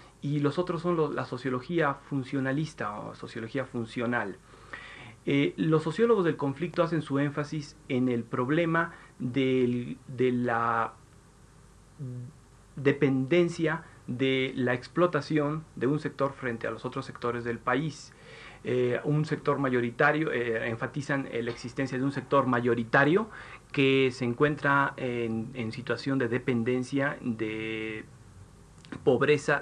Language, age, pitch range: Spanish, 40-59, 120-150 Hz